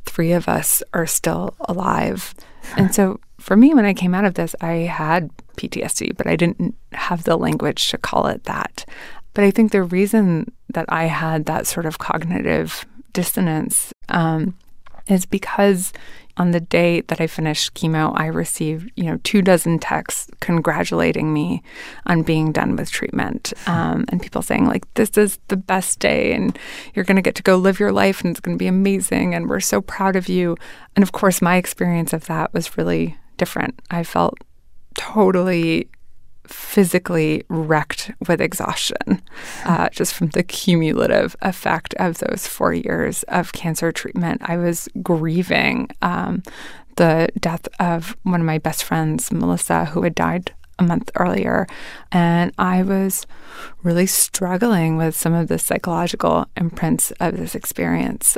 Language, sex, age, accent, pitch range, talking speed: English, female, 20-39, American, 165-195 Hz, 165 wpm